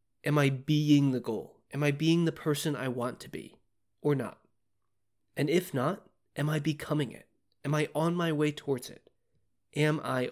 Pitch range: 120-155 Hz